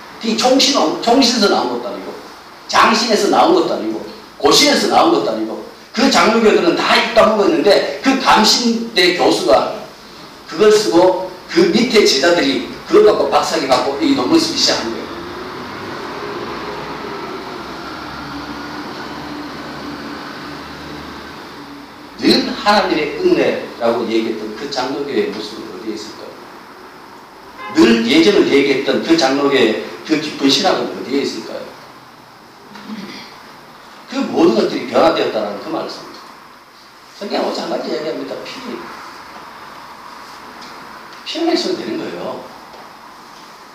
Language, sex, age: Korean, male, 40-59